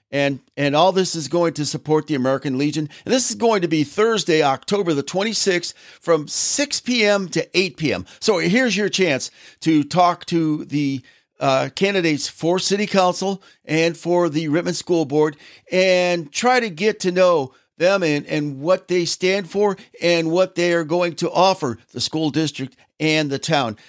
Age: 50-69